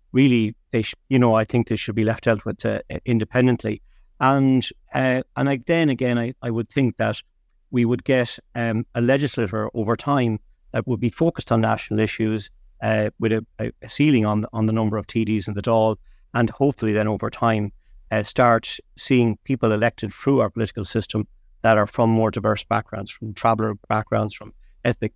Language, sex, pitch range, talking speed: English, male, 110-120 Hz, 195 wpm